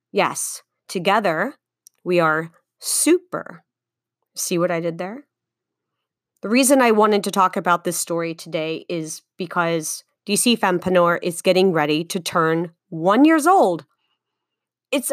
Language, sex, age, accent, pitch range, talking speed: English, female, 30-49, American, 170-215 Hz, 130 wpm